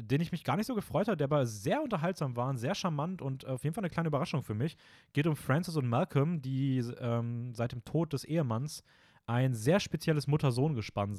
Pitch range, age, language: 115-145 Hz, 30-49, German